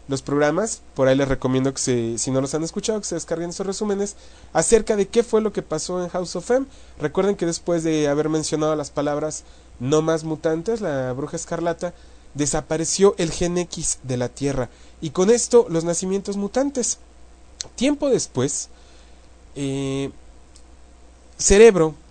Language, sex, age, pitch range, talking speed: English, male, 30-49, 135-190 Hz, 160 wpm